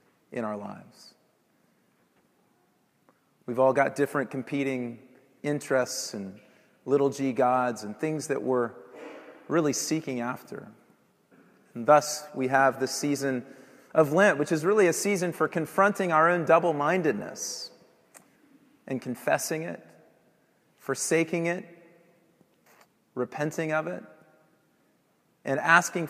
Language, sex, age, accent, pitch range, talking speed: English, male, 30-49, American, 125-165 Hz, 115 wpm